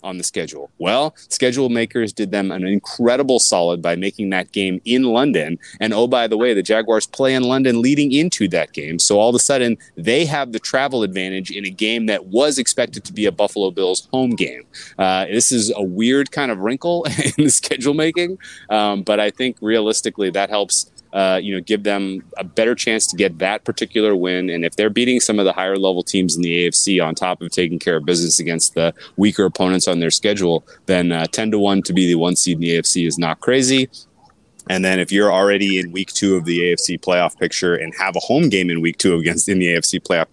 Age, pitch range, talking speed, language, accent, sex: 30-49, 90-110 Hz, 230 wpm, English, American, male